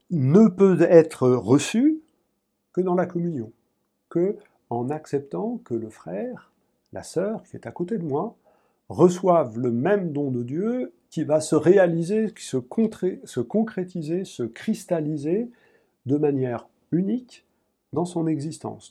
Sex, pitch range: male, 125-180 Hz